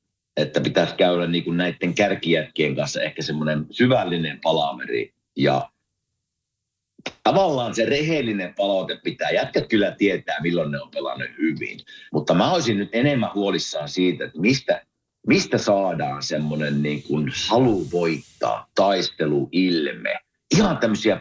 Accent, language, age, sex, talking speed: native, Finnish, 50-69, male, 125 wpm